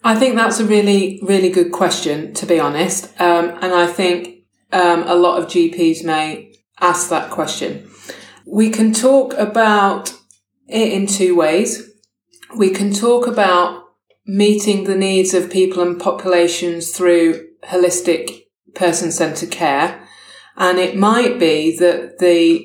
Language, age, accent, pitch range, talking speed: English, 20-39, British, 170-200 Hz, 140 wpm